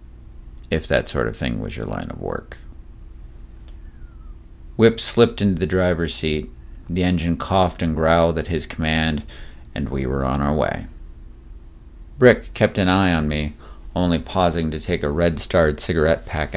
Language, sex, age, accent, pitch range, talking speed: English, male, 40-59, American, 65-85 Hz, 160 wpm